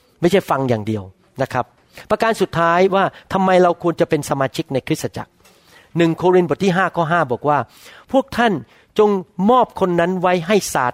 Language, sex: Thai, male